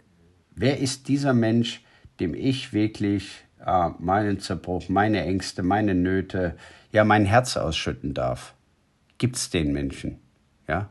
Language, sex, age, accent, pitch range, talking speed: German, male, 50-69, German, 90-110 Hz, 130 wpm